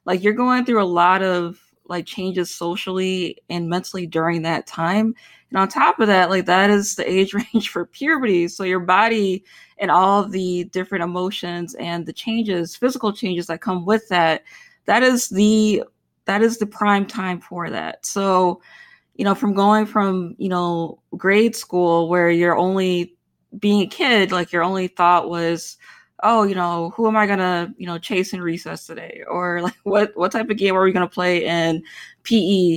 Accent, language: American, English